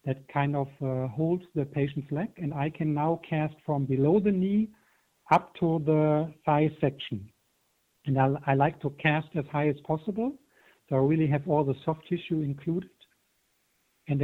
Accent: German